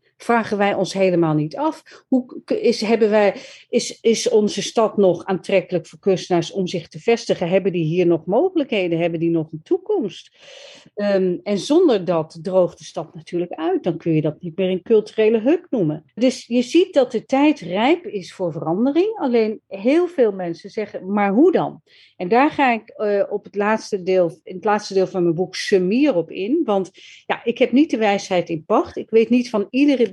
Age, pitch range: 40-59, 175-235 Hz